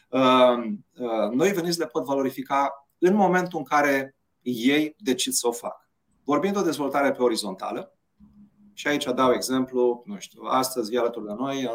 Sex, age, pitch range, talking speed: male, 30-49, 110-145 Hz, 170 wpm